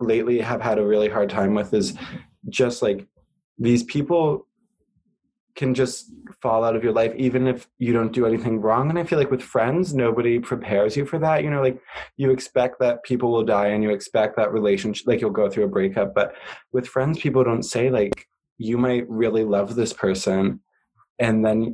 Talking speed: 200 wpm